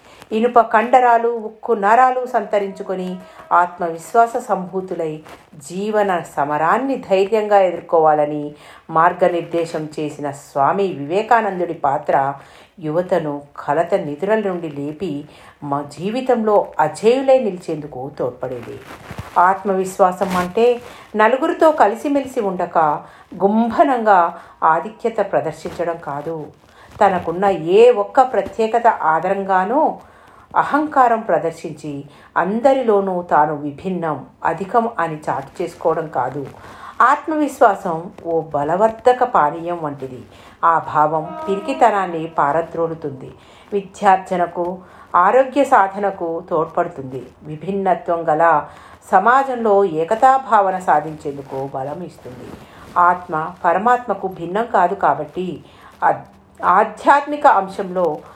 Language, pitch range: Telugu, 160-220 Hz